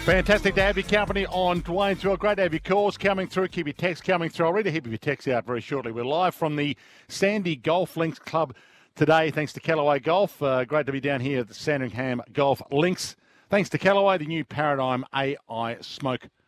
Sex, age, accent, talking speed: male, 50-69, Australian, 225 wpm